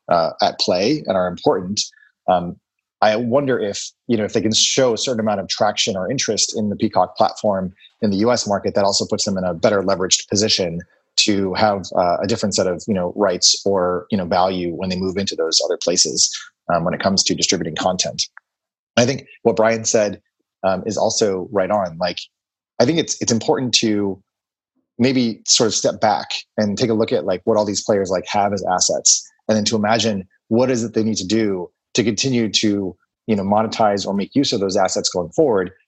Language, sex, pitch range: English, male, 95-115 Hz